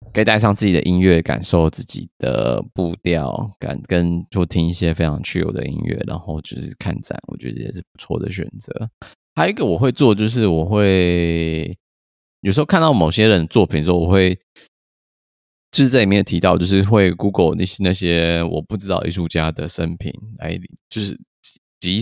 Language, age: Chinese, 20-39